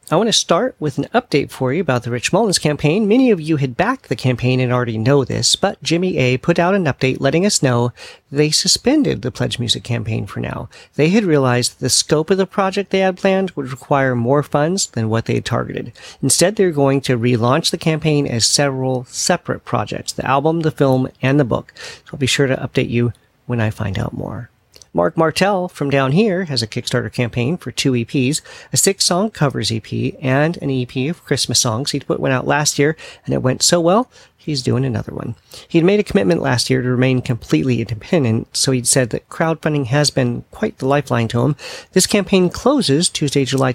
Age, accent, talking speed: 40-59, American, 215 wpm